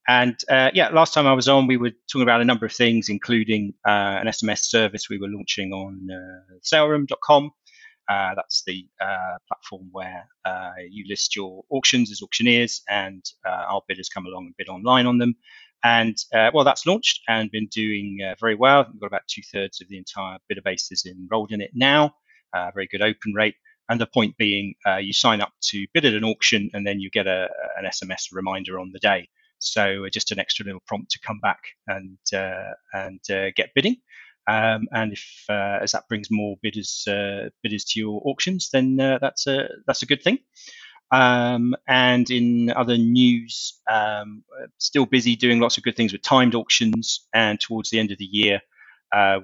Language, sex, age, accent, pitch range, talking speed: English, male, 30-49, British, 100-125 Hz, 205 wpm